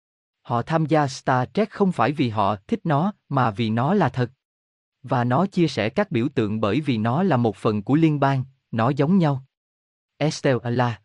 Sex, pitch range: male, 115-155 Hz